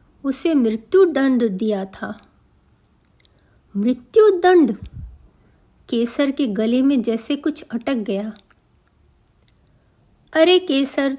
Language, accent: Hindi, native